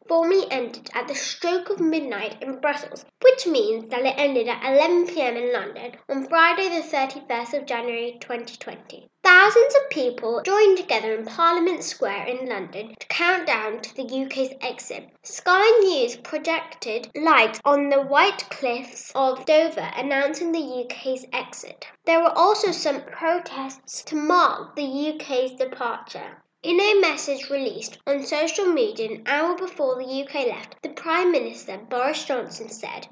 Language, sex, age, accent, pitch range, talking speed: English, female, 10-29, British, 255-350 Hz, 155 wpm